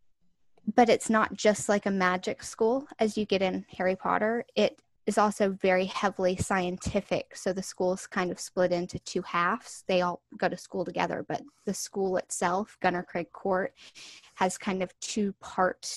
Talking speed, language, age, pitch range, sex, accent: 175 wpm, English, 10-29, 185-225 Hz, female, American